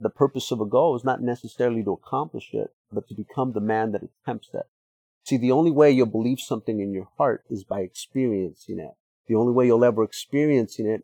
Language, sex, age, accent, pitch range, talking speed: English, male, 50-69, American, 105-135 Hz, 215 wpm